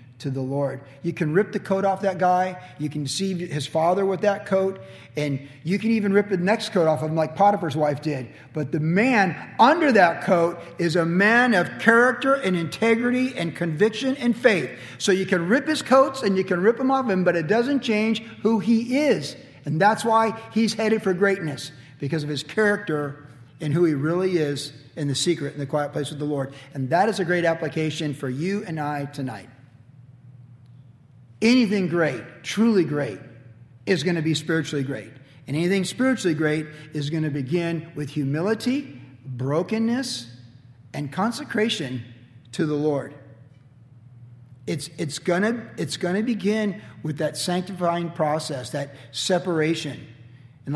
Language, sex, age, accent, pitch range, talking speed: English, male, 50-69, American, 140-195 Hz, 175 wpm